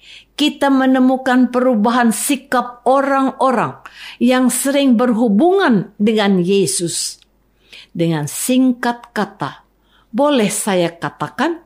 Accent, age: native, 50-69